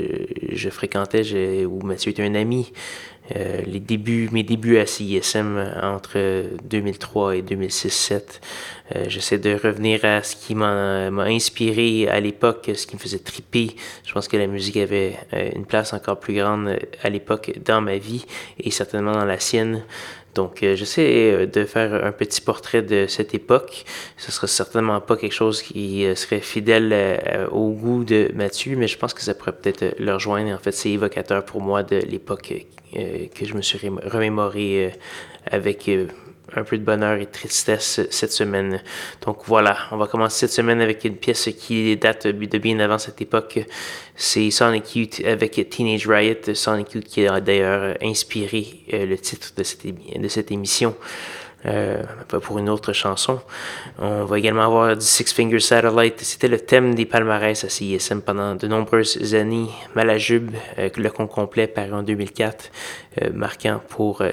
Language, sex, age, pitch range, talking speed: French, male, 20-39, 100-110 Hz, 175 wpm